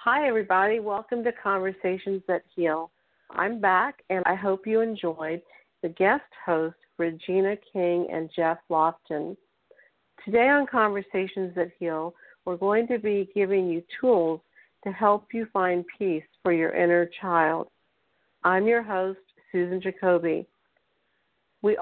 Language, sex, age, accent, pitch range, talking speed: English, female, 50-69, American, 175-205 Hz, 135 wpm